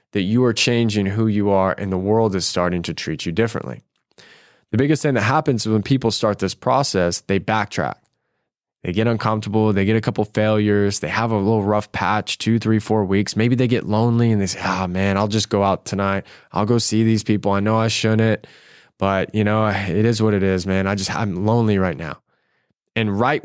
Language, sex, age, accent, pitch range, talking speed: English, male, 20-39, American, 100-125 Hz, 225 wpm